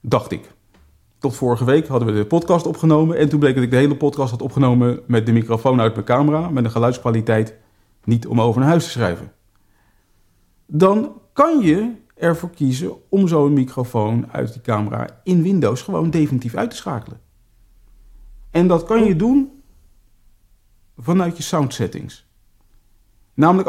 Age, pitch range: 50-69, 110-165 Hz